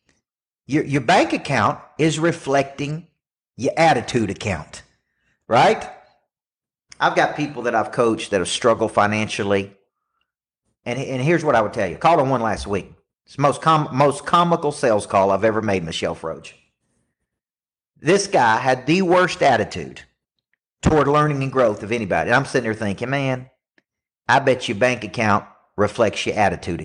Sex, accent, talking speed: male, American, 160 wpm